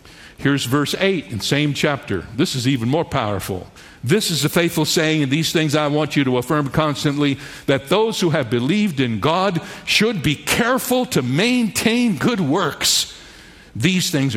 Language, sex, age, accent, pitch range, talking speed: English, male, 60-79, American, 145-210 Hz, 175 wpm